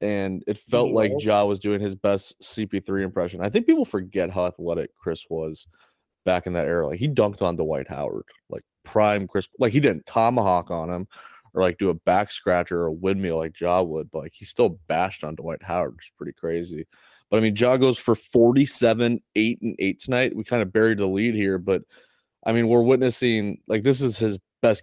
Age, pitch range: 20-39, 95-115 Hz